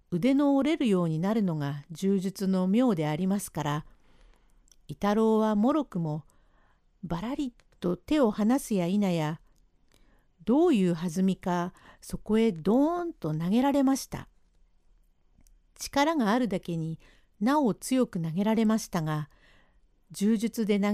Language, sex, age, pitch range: Japanese, female, 50-69, 160-255 Hz